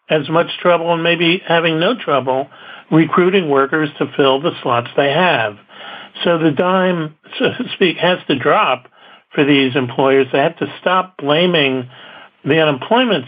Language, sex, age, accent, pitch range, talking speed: English, male, 60-79, American, 135-160 Hz, 160 wpm